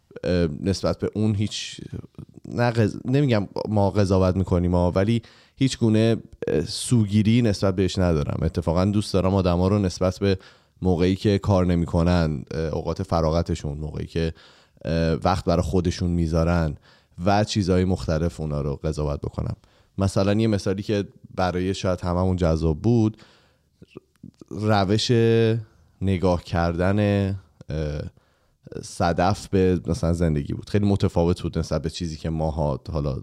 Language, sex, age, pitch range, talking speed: Persian, male, 30-49, 80-100 Hz, 125 wpm